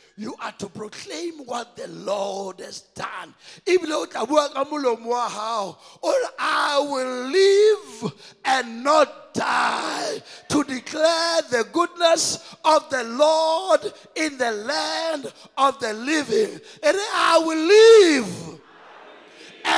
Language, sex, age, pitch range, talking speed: English, male, 50-69, 260-340 Hz, 100 wpm